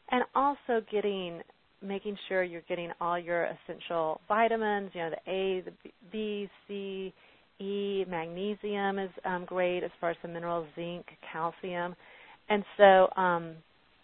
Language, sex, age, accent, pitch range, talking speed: English, female, 30-49, American, 170-215 Hz, 140 wpm